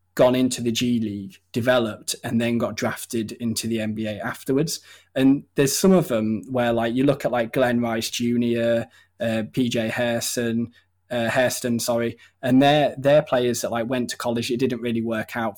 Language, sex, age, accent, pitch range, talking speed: English, male, 10-29, British, 110-125 Hz, 175 wpm